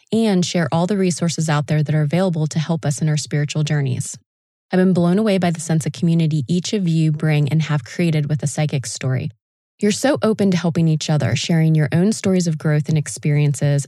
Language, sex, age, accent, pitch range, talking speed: English, female, 20-39, American, 150-185 Hz, 225 wpm